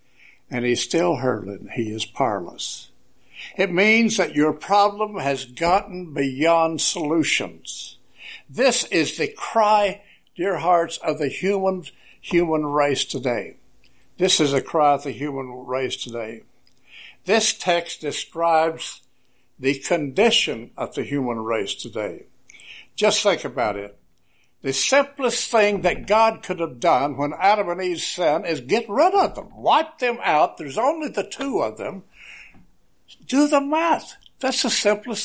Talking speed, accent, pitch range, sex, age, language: 145 wpm, American, 135-205 Hz, male, 60-79, English